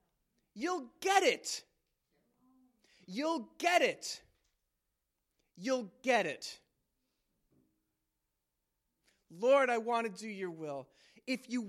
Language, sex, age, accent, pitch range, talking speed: English, male, 30-49, American, 205-280 Hz, 90 wpm